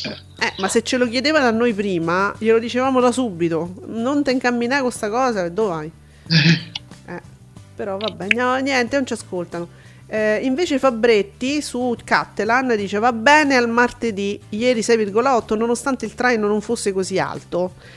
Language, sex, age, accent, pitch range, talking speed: Italian, female, 40-59, native, 190-245 Hz, 160 wpm